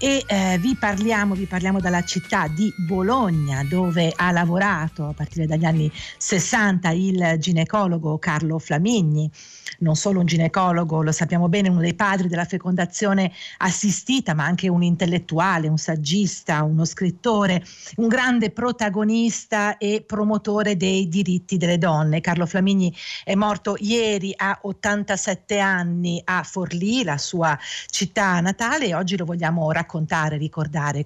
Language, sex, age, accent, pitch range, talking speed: Italian, female, 50-69, native, 165-205 Hz, 140 wpm